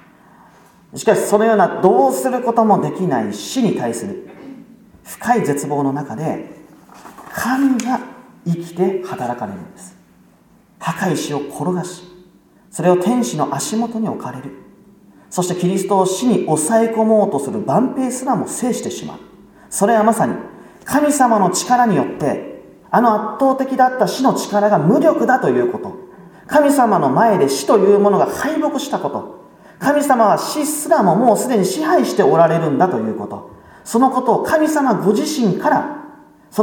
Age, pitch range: 40-59, 190-255 Hz